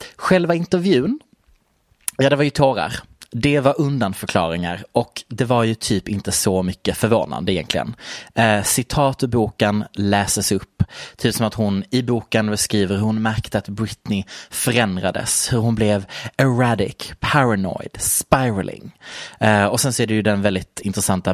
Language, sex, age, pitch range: Swedish, male, 30-49, 100-140 Hz